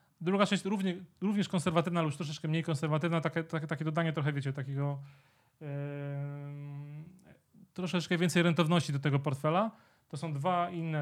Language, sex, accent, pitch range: Polish, male, native, 150-170 Hz